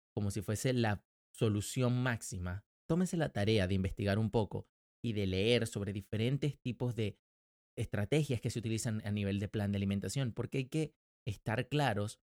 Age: 30-49